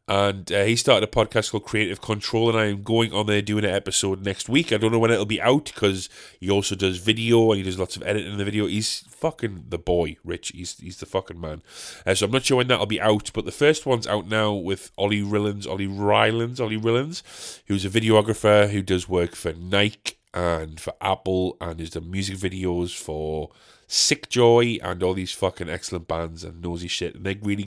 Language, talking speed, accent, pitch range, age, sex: English, 225 wpm, British, 90-110 Hz, 20-39, male